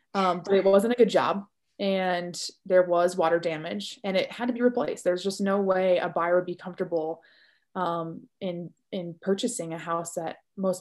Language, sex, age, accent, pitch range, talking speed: English, female, 20-39, American, 180-230 Hz, 195 wpm